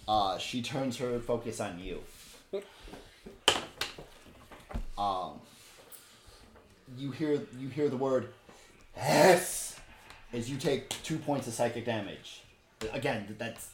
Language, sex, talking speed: English, male, 110 wpm